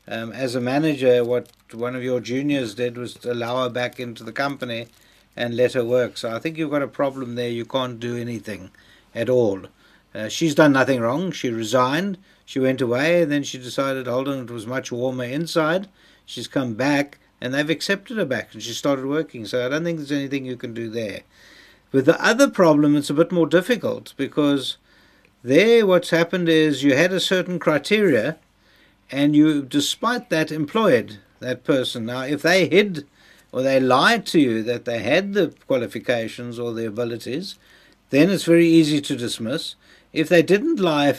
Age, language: 60-79, English